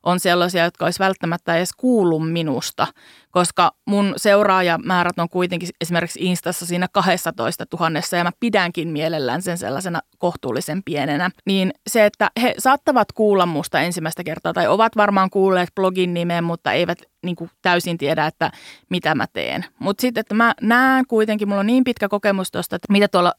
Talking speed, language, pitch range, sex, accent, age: 170 wpm, Finnish, 175-220 Hz, female, native, 30-49